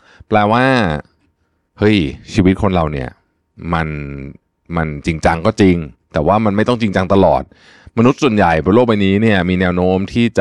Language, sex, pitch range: Thai, male, 90-115 Hz